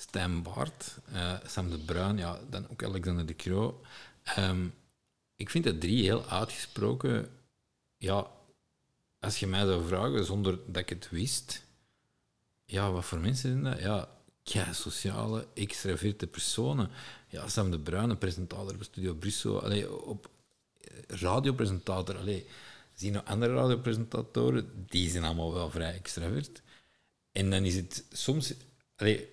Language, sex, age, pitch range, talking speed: Dutch, male, 50-69, 95-120 Hz, 145 wpm